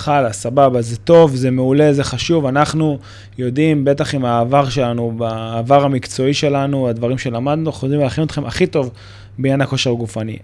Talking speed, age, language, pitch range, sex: 160 wpm, 20-39, Hebrew, 120-160 Hz, male